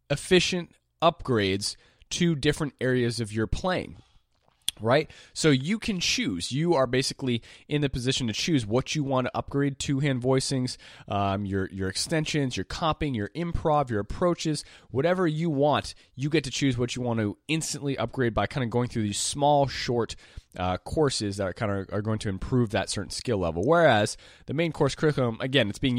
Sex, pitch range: male, 95-135 Hz